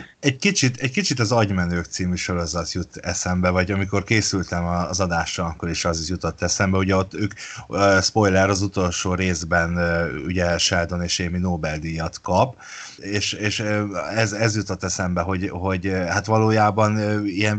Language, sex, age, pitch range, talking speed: Hungarian, male, 30-49, 90-115 Hz, 150 wpm